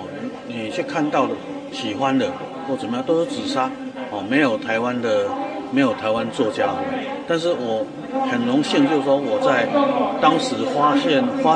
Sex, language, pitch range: male, Chinese, 260-270 Hz